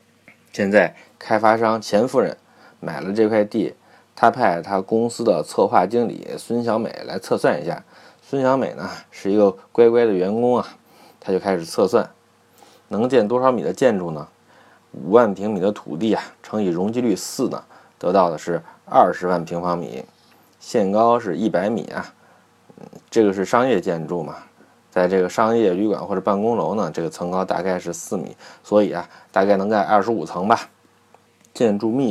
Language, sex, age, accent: Chinese, male, 20-39, native